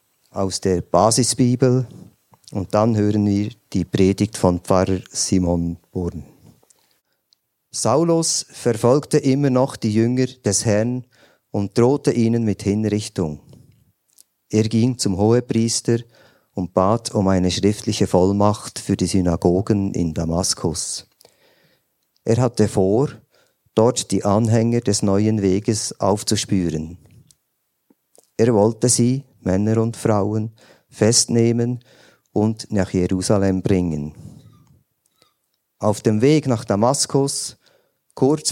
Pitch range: 95-120 Hz